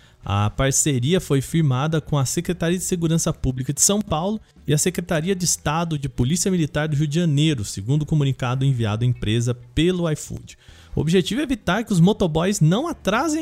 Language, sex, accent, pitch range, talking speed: Portuguese, male, Brazilian, 145-195 Hz, 190 wpm